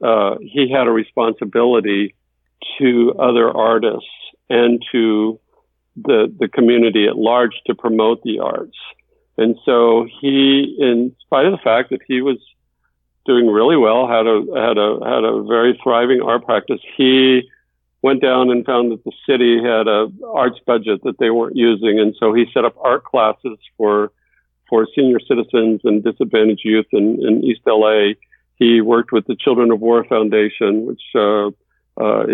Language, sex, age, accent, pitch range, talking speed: English, male, 50-69, American, 110-125 Hz, 165 wpm